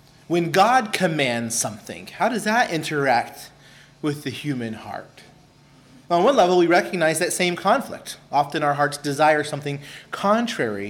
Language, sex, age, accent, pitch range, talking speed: English, male, 30-49, American, 145-195 Hz, 145 wpm